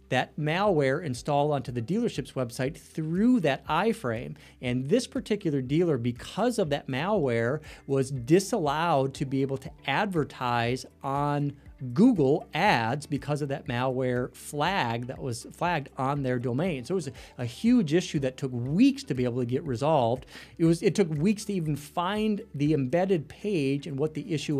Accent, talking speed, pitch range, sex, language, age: American, 170 wpm, 130-165 Hz, male, English, 40-59